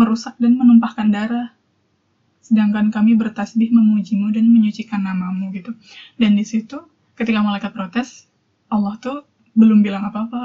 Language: Indonesian